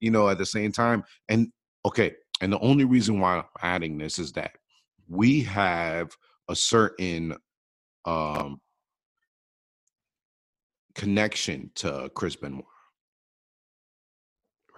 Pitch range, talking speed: 85-105 Hz, 110 wpm